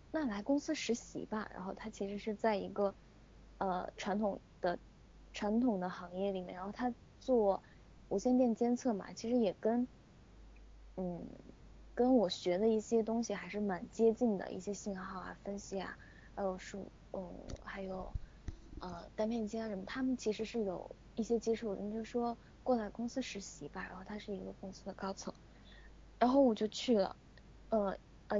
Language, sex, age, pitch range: Chinese, female, 20-39, 190-245 Hz